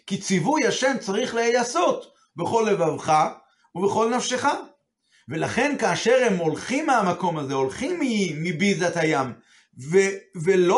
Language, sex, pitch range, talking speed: Hebrew, male, 170-230 Hz, 115 wpm